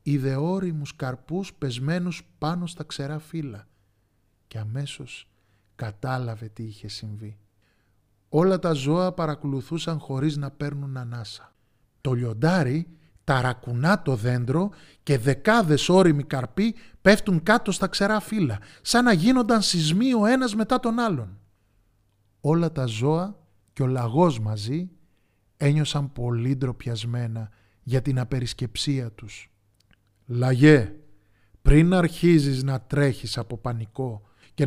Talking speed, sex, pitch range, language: 115 wpm, male, 110-155 Hz, Greek